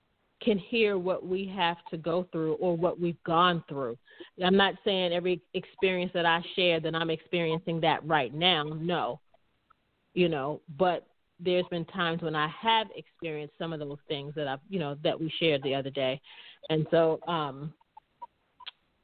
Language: English